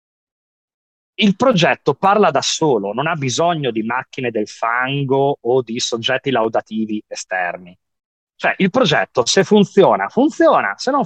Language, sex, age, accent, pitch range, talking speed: Italian, male, 30-49, native, 120-170 Hz, 135 wpm